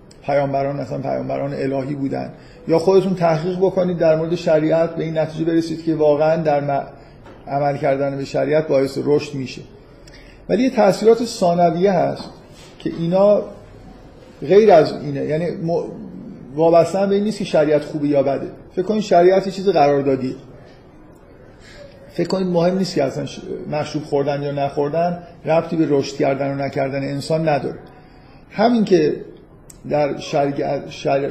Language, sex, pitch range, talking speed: Persian, male, 145-180 Hz, 145 wpm